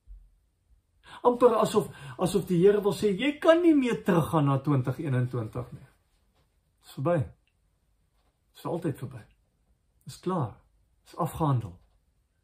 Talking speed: 135 wpm